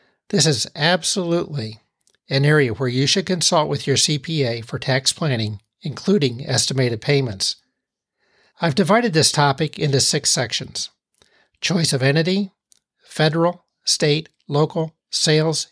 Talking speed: 120 wpm